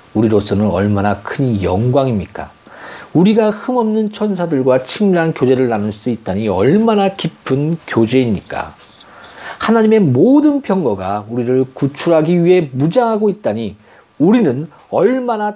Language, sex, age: Korean, male, 40-59